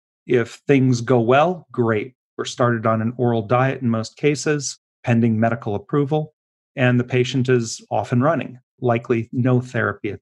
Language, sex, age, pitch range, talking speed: English, male, 40-59, 120-140 Hz, 165 wpm